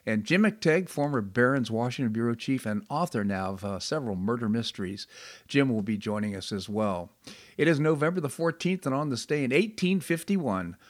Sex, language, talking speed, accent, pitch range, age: male, English, 185 wpm, American, 110-140 Hz, 50-69